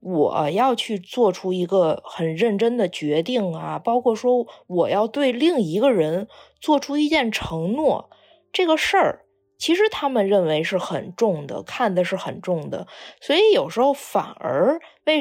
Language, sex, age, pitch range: Chinese, female, 20-39, 185-270 Hz